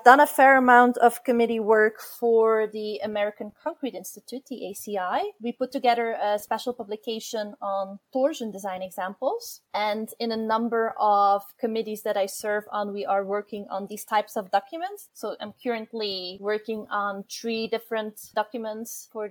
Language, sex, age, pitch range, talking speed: English, female, 20-39, 205-235 Hz, 160 wpm